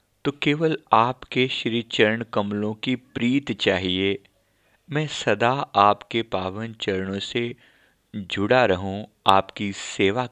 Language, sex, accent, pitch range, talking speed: Hindi, male, native, 95-115 Hz, 110 wpm